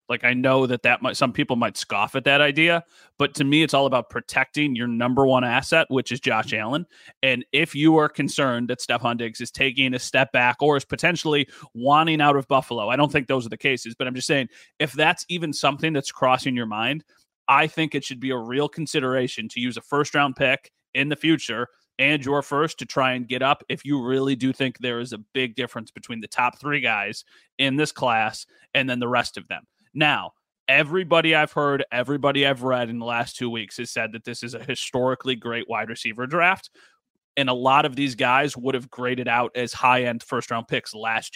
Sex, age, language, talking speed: male, 30-49, English, 225 wpm